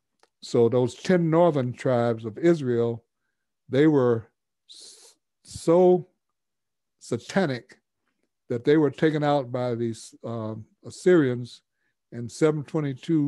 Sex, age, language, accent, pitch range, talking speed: male, 60-79, English, American, 120-150 Hz, 100 wpm